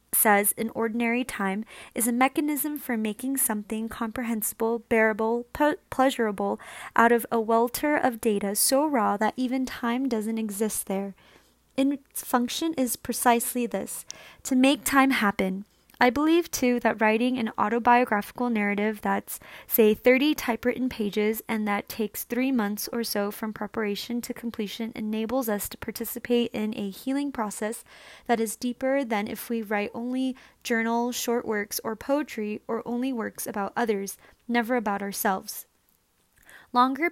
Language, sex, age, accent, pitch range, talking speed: English, female, 20-39, American, 215-255 Hz, 150 wpm